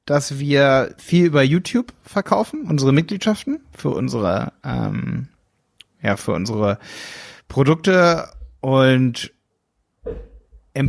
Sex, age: male, 30-49